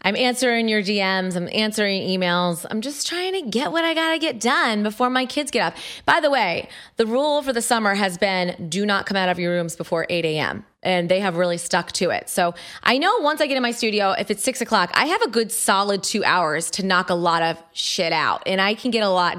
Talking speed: 255 wpm